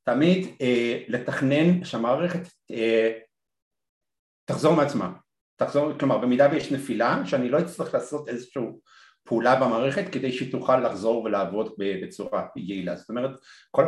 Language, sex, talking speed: Hebrew, male, 125 wpm